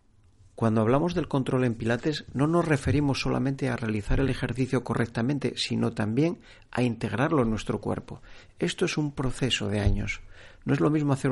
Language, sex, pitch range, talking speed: Spanish, male, 105-135 Hz, 175 wpm